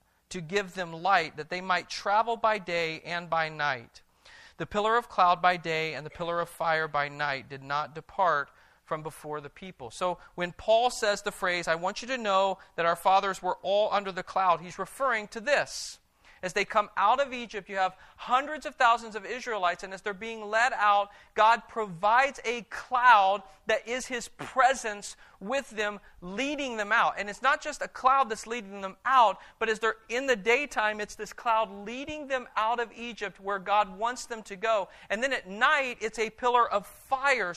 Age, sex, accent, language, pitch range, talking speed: 40-59, male, American, English, 190-235 Hz, 205 wpm